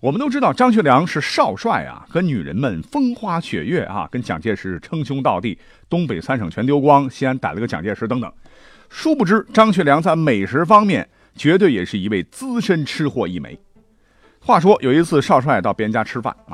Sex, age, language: male, 50-69, Chinese